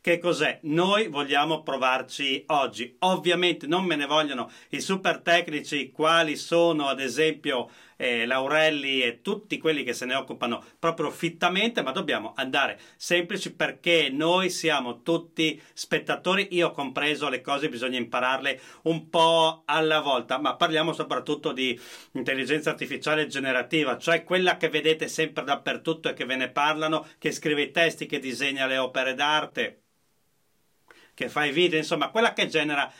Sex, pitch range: male, 145-170 Hz